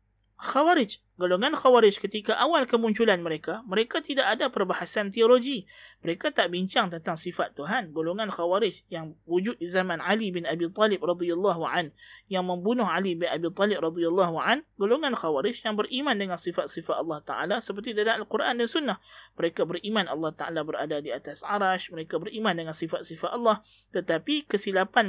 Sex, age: male, 20-39